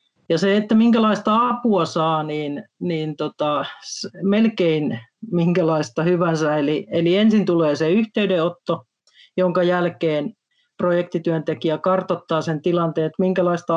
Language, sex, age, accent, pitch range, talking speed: Finnish, male, 40-59, native, 160-185 Hz, 110 wpm